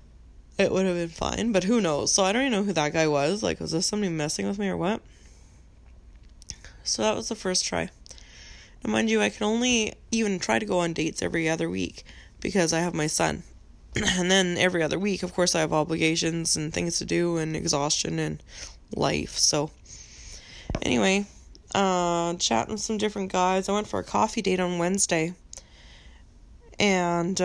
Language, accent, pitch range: English, American, 145-200 Hz